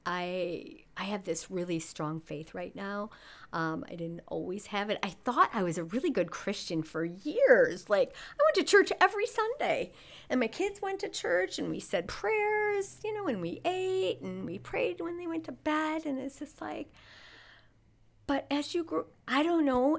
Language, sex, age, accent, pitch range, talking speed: English, female, 40-59, American, 210-340 Hz, 200 wpm